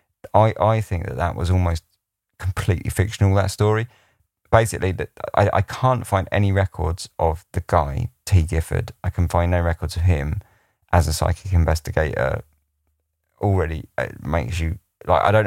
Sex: male